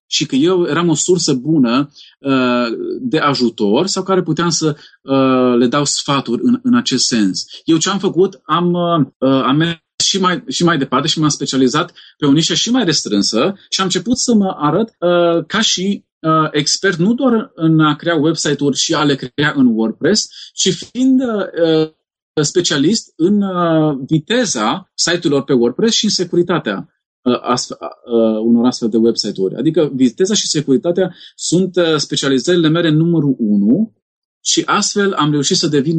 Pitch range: 135-180 Hz